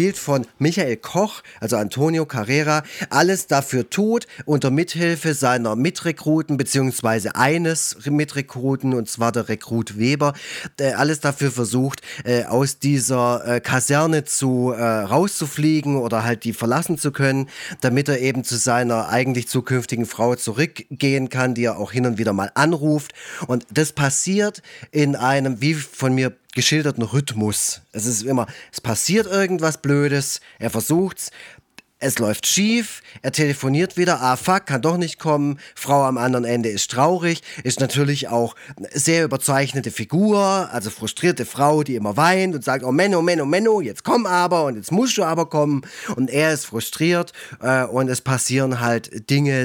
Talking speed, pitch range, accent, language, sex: 160 wpm, 120-155 Hz, German, German, male